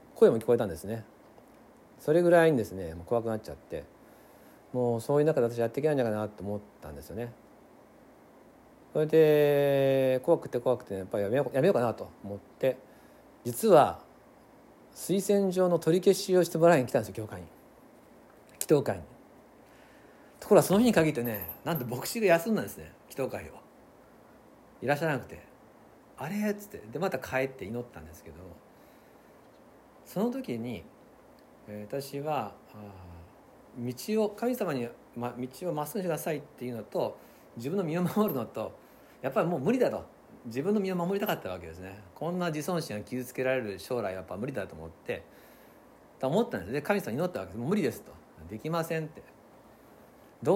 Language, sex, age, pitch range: Japanese, male, 50-69, 105-170 Hz